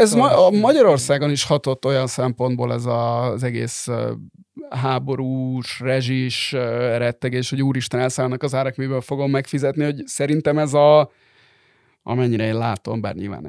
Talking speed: 140 wpm